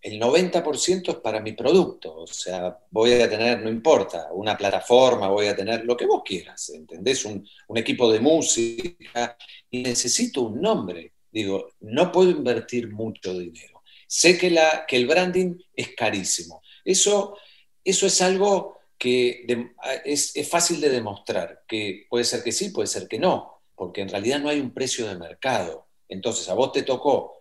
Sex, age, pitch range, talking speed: male, 40-59, 110-155 Hz, 175 wpm